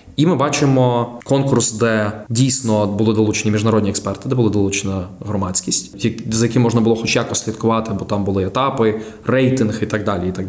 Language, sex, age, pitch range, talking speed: Ukrainian, male, 20-39, 100-120 Hz, 175 wpm